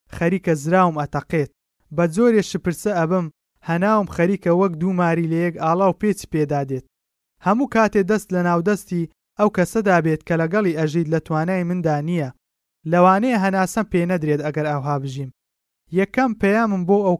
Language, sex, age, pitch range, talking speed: Persian, male, 20-39, 155-195 Hz, 150 wpm